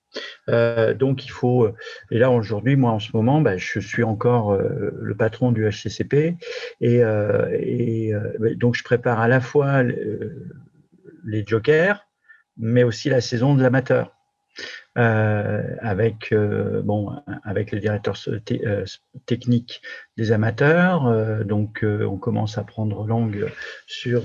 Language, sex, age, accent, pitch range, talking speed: French, male, 50-69, French, 110-140 Hz, 140 wpm